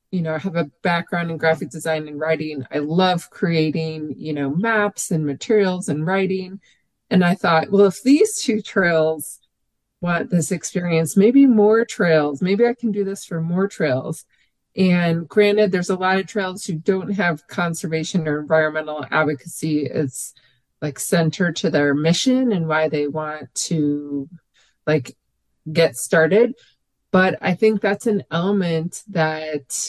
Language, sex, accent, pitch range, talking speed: English, female, American, 155-195 Hz, 155 wpm